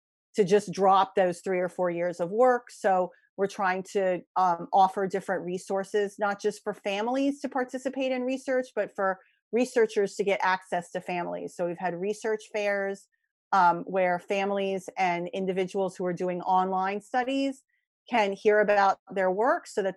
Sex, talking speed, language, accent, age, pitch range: female, 170 wpm, English, American, 40-59, 180-225 Hz